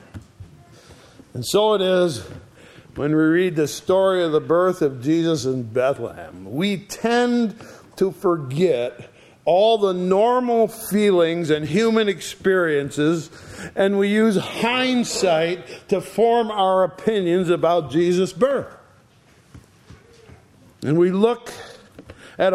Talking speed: 110 wpm